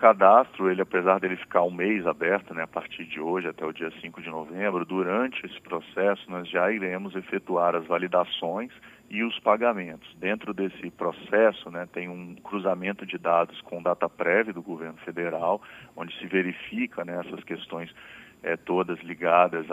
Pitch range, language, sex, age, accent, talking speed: 85-95 Hz, Portuguese, male, 40-59, Brazilian, 165 wpm